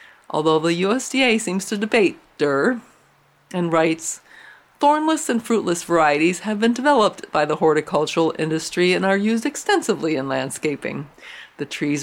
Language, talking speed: English, 140 wpm